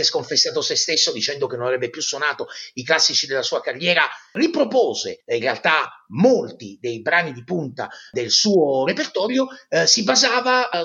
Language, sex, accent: Italian, male, native